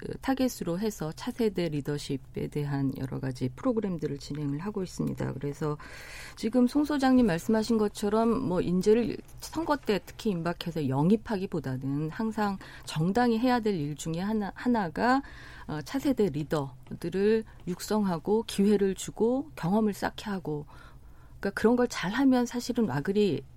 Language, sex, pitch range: Korean, female, 145-220 Hz